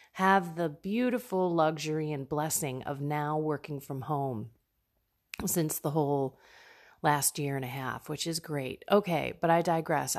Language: English